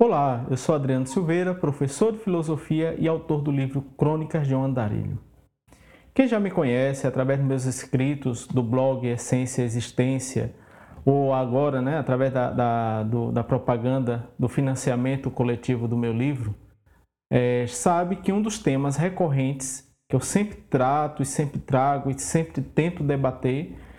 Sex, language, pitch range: male, Portuguese, 130-155 Hz